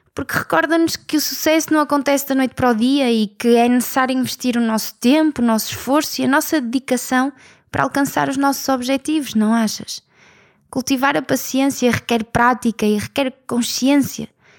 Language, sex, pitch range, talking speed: Portuguese, female, 230-265 Hz, 175 wpm